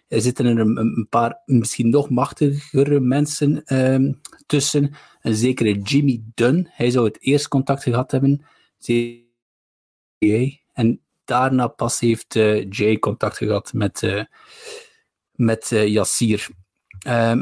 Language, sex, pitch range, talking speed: Dutch, male, 110-135 Hz, 125 wpm